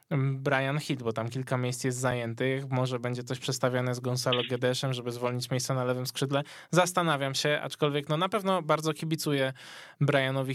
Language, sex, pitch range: Polish, male, 130-155 Hz